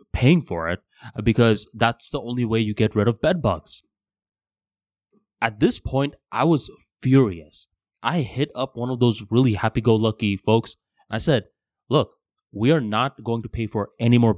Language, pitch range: English, 95-140 Hz